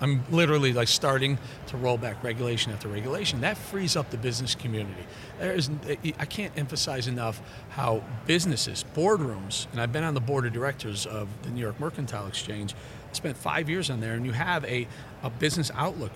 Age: 40-59